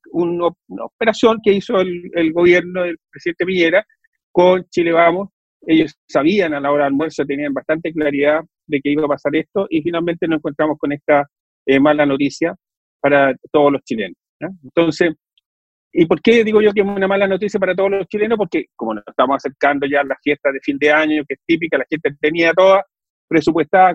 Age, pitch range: 40-59, 150-195 Hz